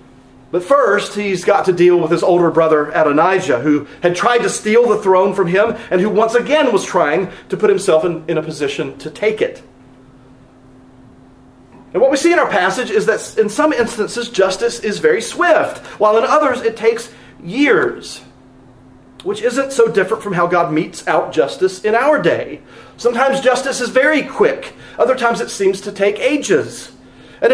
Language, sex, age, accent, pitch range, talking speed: English, male, 40-59, American, 175-270 Hz, 185 wpm